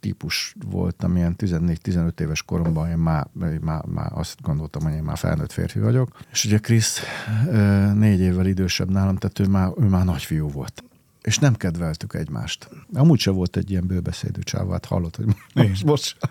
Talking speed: 175 wpm